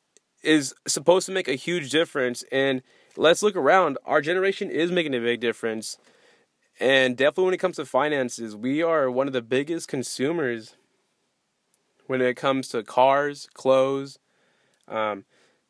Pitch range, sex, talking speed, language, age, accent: 130-165 Hz, male, 150 wpm, English, 20-39, American